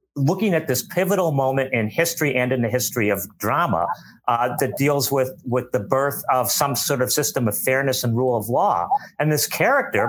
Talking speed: 200 wpm